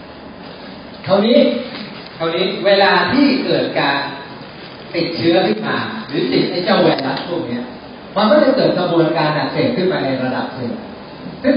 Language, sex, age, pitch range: Thai, male, 40-59, 145-205 Hz